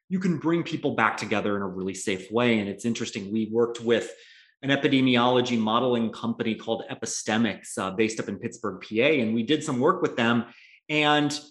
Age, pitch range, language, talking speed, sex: 30-49, 120-155 Hz, English, 195 wpm, male